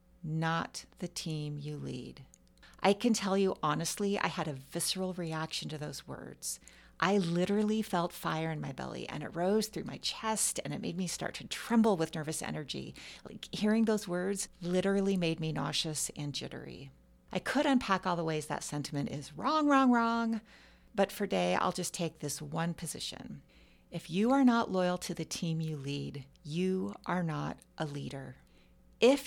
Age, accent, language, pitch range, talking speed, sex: 40-59, American, English, 155-205 Hz, 180 wpm, female